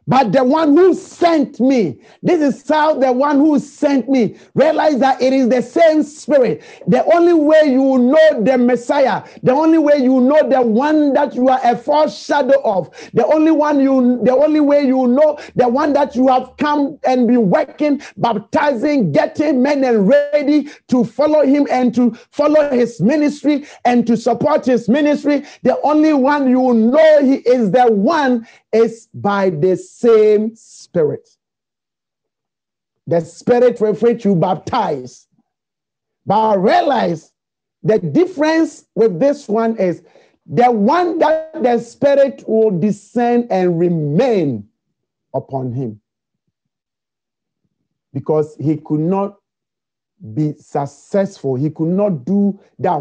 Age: 50-69